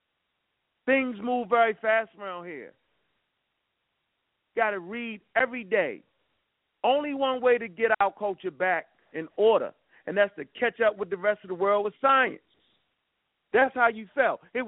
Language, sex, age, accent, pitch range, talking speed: English, male, 40-59, American, 215-275 Hz, 160 wpm